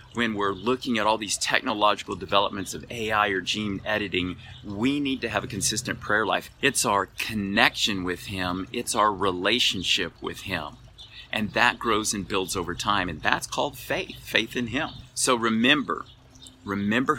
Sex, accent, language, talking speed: male, American, English, 170 wpm